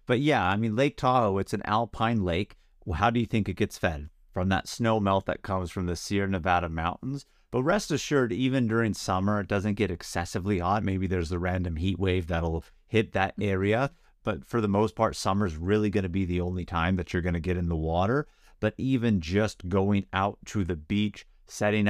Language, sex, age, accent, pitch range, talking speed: English, male, 30-49, American, 90-105 Hz, 210 wpm